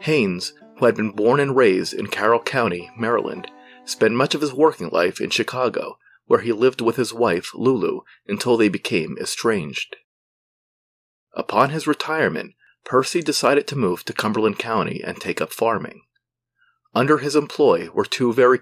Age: 40-59